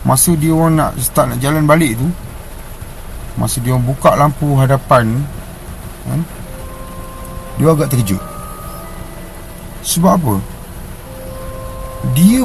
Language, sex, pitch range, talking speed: Malay, male, 115-185 Hz, 110 wpm